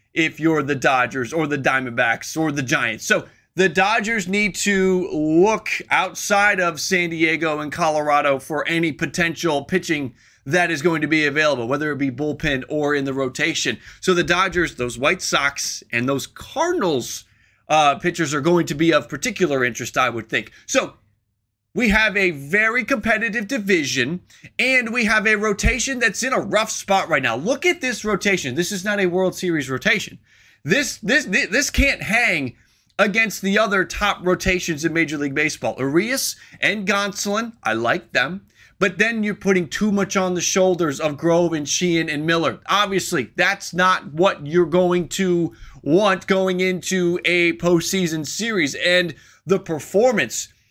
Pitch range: 145-195 Hz